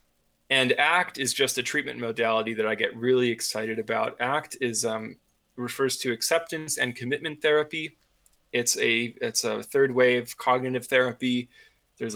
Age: 20-39